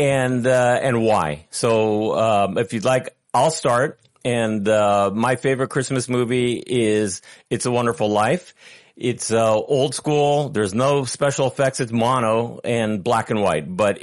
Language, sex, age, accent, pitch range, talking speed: English, male, 40-59, American, 110-130 Hz, 160 wpm